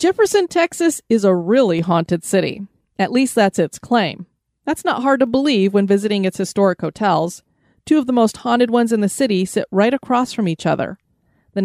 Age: 30-49